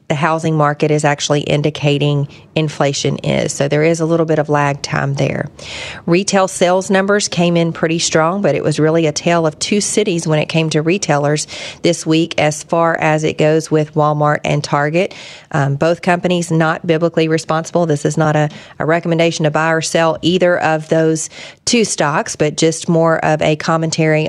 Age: 40-59